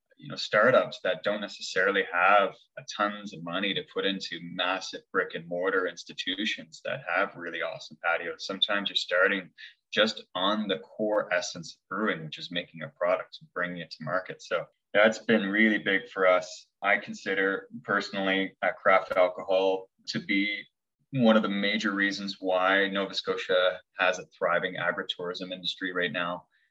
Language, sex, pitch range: English, male, 90-105 Hz